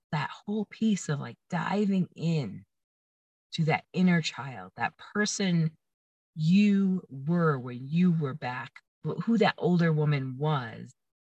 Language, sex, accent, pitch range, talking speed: English, female, American, 130-175 Hz, 130 wpm